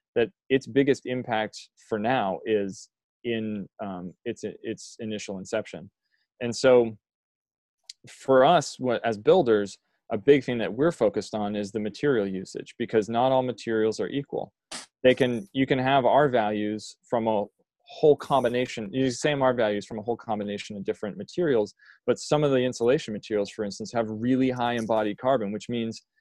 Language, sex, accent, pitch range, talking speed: English, male, American, 105-130 Hz, 170 wpm